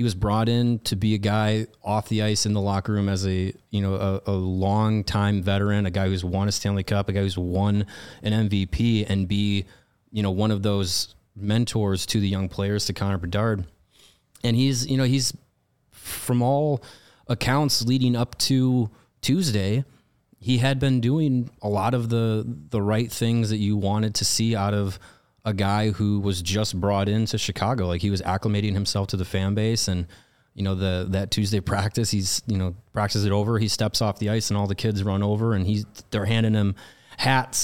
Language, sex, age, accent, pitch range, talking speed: English, male, 30-49, American, 100-115 Hz, 205 wpm